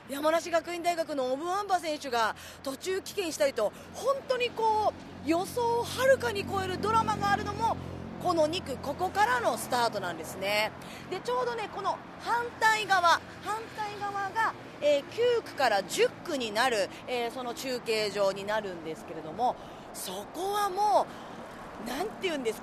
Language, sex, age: Japanese, female, 30-49